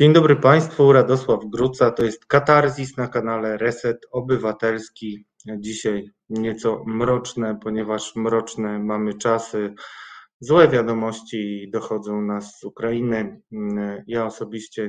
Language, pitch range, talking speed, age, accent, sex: Polish, 105-125 Hz, 110 wpm, 20-39, native, male